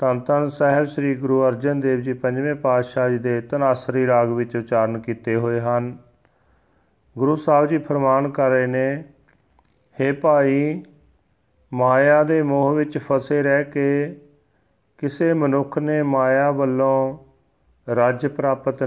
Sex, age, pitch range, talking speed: male, 40-59, 125-140 Hz, 130 wpm